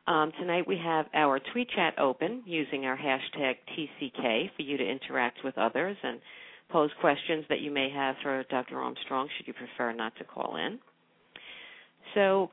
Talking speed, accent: 170 wpm, American